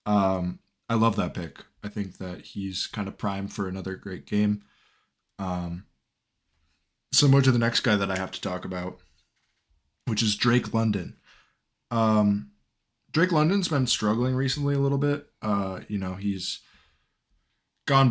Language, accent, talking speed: English, American, 150 wpm